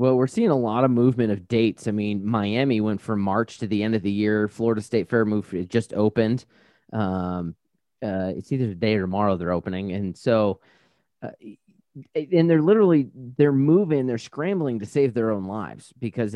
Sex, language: male, English